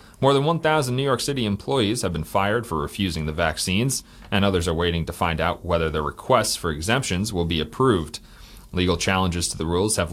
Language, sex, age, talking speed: English, male, 30-49, 205 wpm